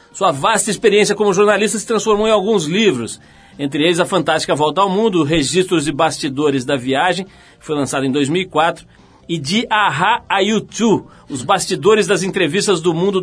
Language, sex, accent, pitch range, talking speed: Portuguese, male, Brazilian, 155-205 Hz, 165 wpm